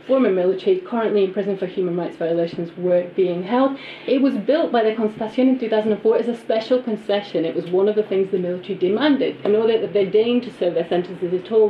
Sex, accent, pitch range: female, British, 190-240 Hz